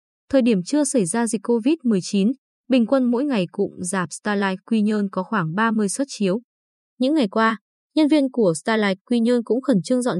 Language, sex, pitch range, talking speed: Vietnamese, female, 190-255 Hz, 200 wpm